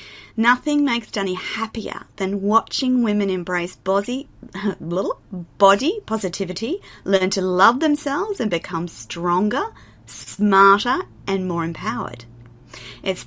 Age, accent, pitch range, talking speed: 30-49, Australian, 170-220 Hz, 110 wpm